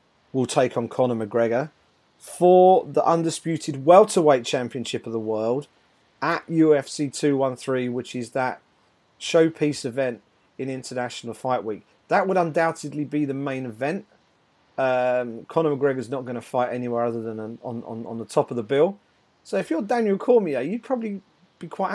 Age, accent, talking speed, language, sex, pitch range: 40-59, British, 160 wpm, English, male, 125-175 Hz